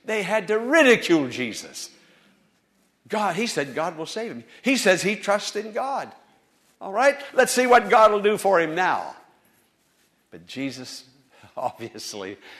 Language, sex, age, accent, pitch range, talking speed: English, male, 60-79, American, 140-210 Hz, 150 wpm